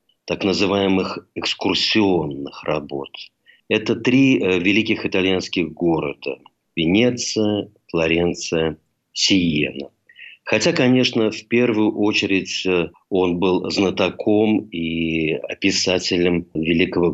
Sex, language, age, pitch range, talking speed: male, Russian, 50-69, 85-110 Hz, 80 wpm